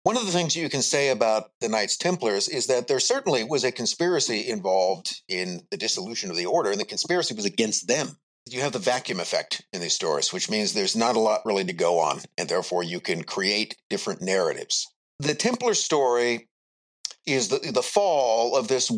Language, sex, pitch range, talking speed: English, male, 115-150 Hz, 205 wpm